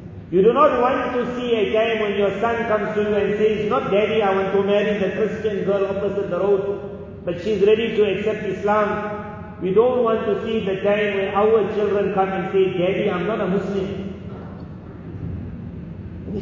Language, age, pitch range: English, 40-59, 180-210 Hz